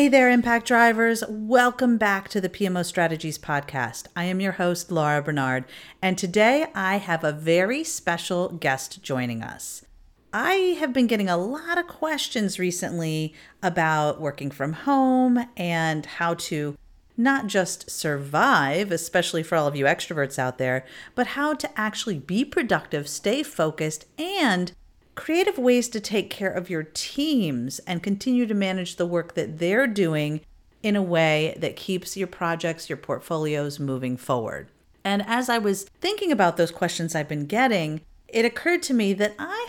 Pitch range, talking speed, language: 160-230 Hz, 165 wpm, English